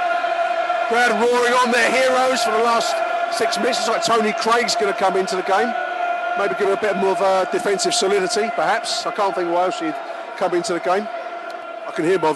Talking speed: 210 wpm